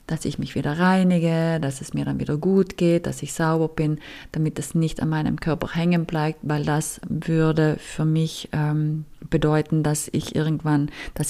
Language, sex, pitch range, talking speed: German, female, 155-175 Hz, 185 wpm